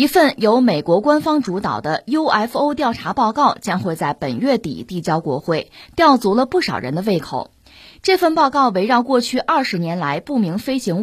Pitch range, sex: 185-280 Hz, female